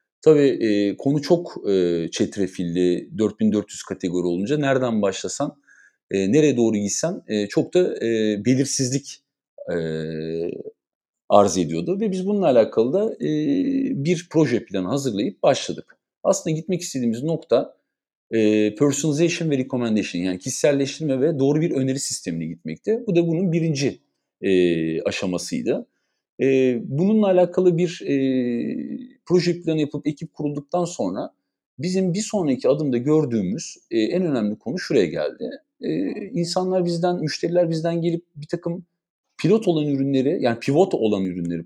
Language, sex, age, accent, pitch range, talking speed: Turkish, male, 50-69, native, 115-175 Hz, 135 wpm